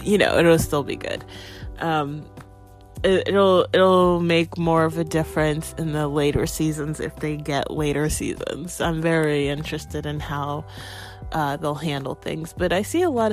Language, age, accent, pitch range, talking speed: English, 30-49, American, 140-180 Hz, 170 wpm